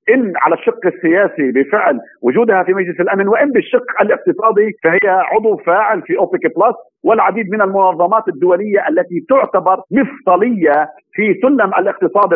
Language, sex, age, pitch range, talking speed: Arabic, male, 50-69, 180-230 Hz, 135 wpm